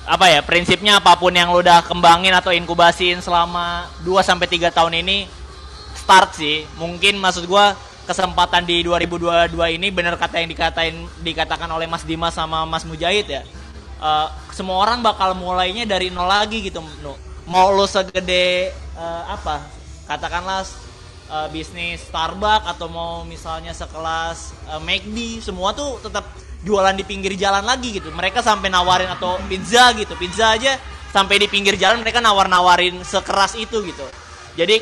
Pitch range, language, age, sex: 165-190 Hz, Indonesian, 20-39, male